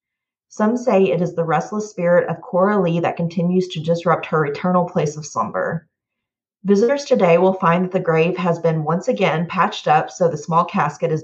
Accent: American